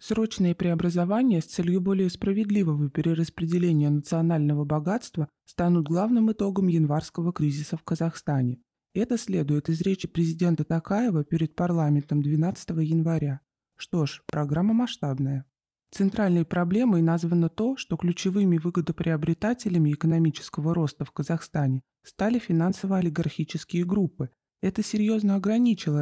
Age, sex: 20-39, male